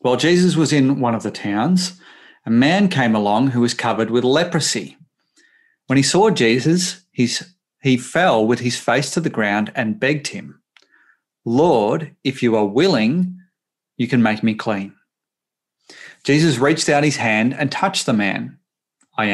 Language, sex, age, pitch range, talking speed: English, male, 30-49, 120-170 Hz, 160 wpm